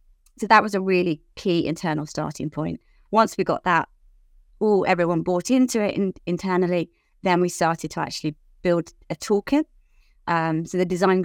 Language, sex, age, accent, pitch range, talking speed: English, female, 30-49, British, 160-195 Hz, 165 wpm